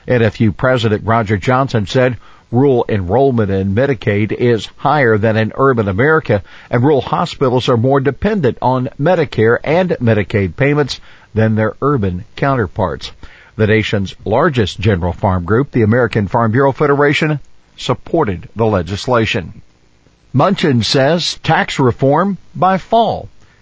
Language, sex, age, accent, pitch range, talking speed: English, male, 50-69, American, 105-135 Hz, 125 wpm